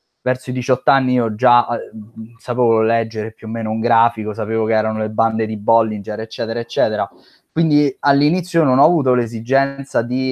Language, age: Italian, 20-39